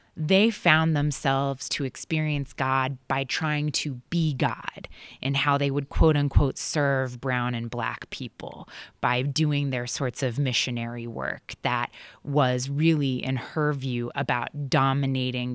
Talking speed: 140 wpm